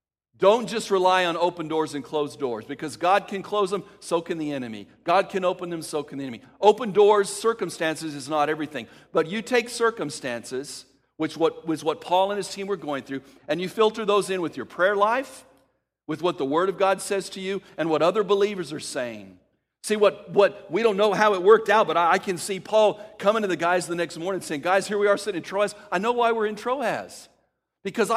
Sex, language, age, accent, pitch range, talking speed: male, English, 50-69, American, 145-200 Hz, 235 wpm